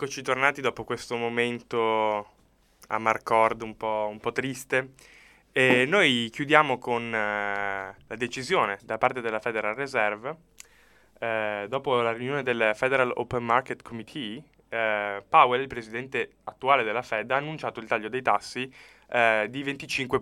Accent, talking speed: Italian, 145 wpm